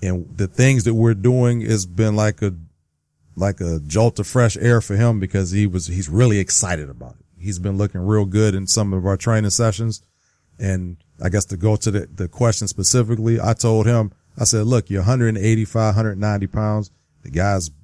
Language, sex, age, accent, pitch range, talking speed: English, male, 40-59, American, 95-110 Hz, 200 wpm